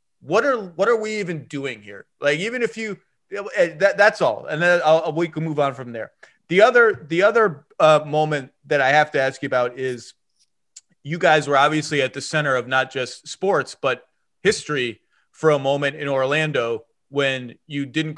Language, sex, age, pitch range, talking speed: English, male, 30-49, 130-160 Hz, 195 wpm